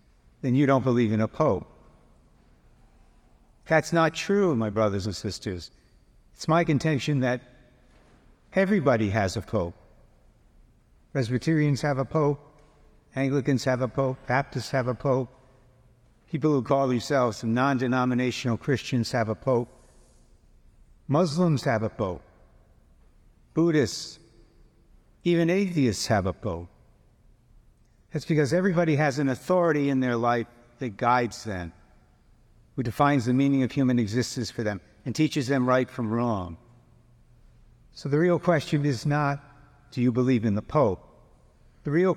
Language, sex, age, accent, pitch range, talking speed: English, male, 60-79, American, 115-140 Hz, 135 wpm